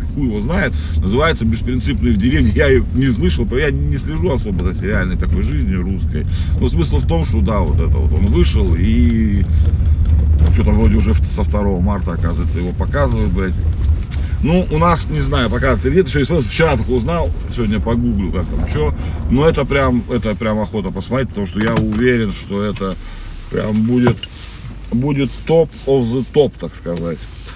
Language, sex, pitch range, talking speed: Russian, male, 85-115 Hz, 170 wpm